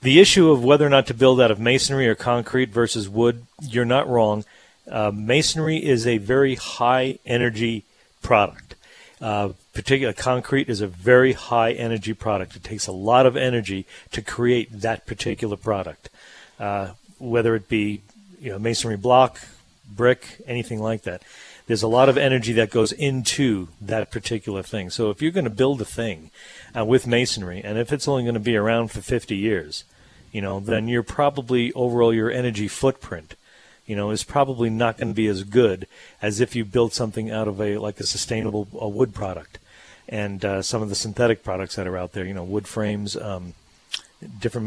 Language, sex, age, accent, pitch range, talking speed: English, male, 50-69, American, 105-125 Hz, 185 wpm